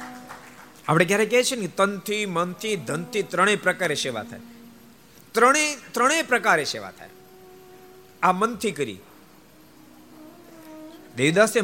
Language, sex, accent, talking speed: Gujarati, male, native, 70 wpm